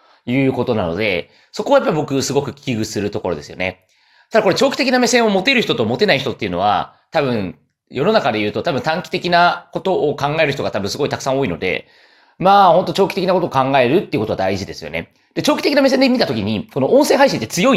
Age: 30-49